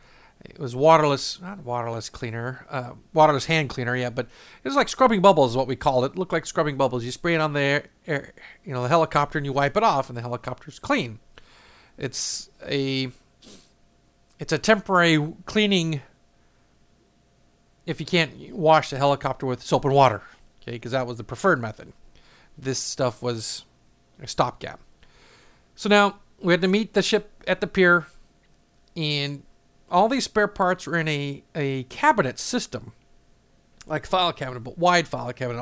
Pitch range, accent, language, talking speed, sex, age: 130-175 Hz, American, English, 175 wpm, male, 50-69